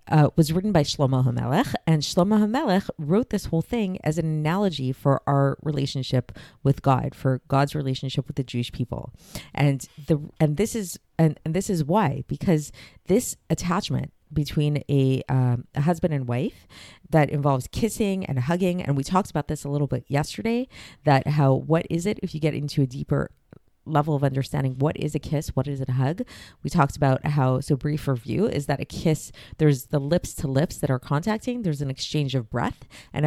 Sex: female